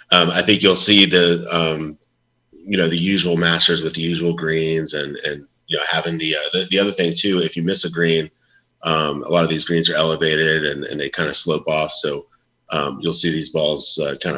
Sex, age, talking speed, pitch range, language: male, 30-49, 235 wpm, 75-90 Hz, English